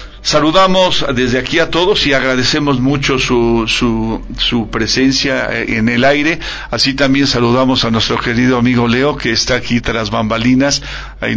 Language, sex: Spanish, male